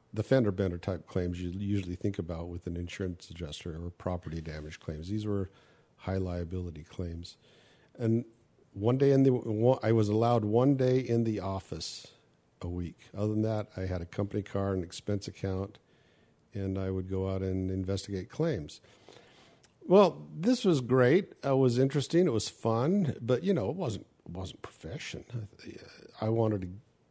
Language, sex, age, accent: English, male, 50-69, American